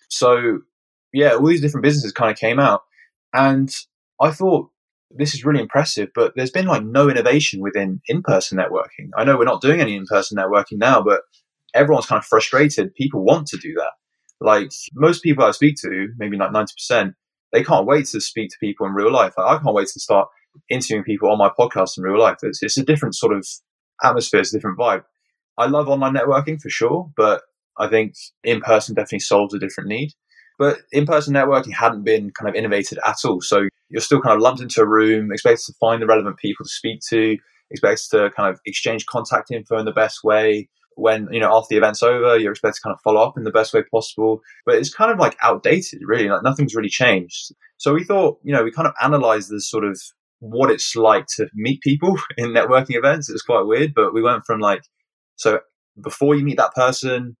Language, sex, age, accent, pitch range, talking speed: English, male, 20-39, British, 110-145 Hz, 215 wpm